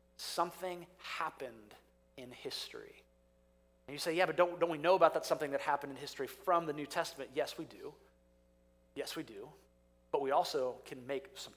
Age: 30-49